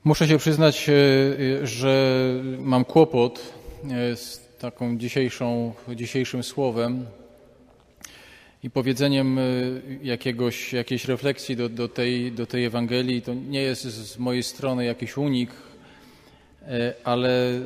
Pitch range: 120-135 Hz